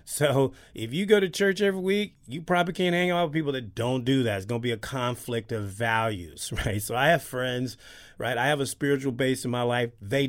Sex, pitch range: male, 115-150 Hz